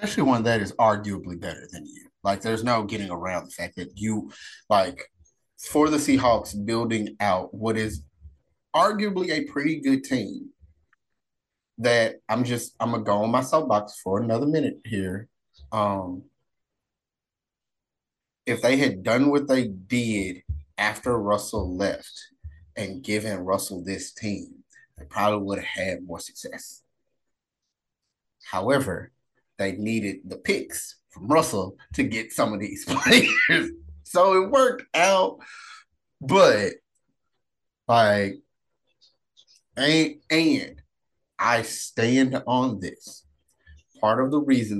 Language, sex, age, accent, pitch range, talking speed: English, male, 30-49, American, 95-120 Hz, 125 wpm